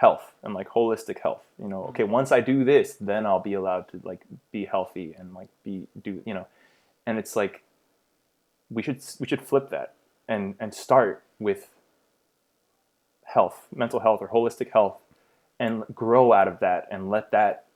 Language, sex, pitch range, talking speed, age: English, male, 95-115 Hz, 180 wpm, 20-39